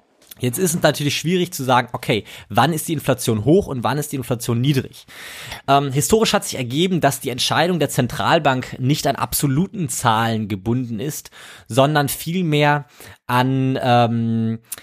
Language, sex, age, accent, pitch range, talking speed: German, male, 20-39, German, 125-150 Hz, 160 wpm